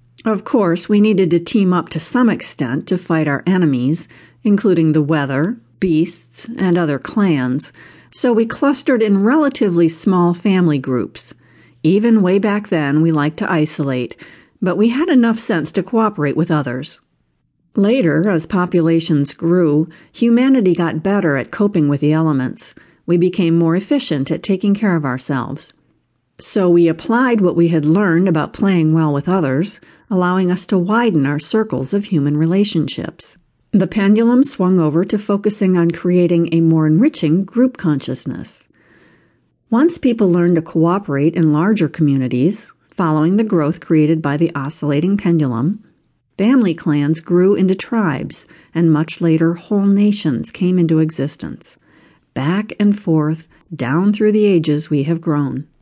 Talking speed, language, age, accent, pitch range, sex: 150 wpm, English, 50-69, American, 155-205 Hz, female